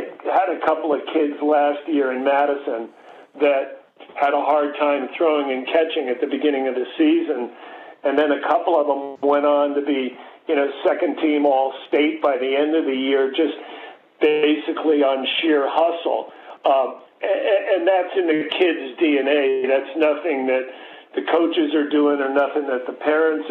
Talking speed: 180 wpm